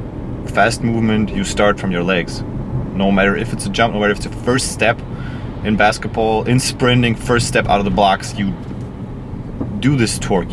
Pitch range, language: 100-120 Hz, English